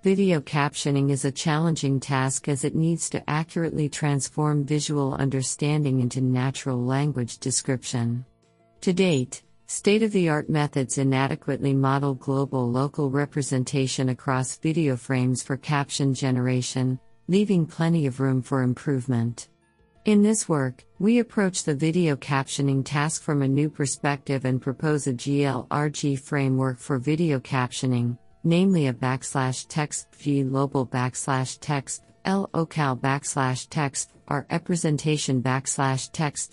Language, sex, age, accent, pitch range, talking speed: English, female, 50-69, American, 130-150 Hz, 120 wpm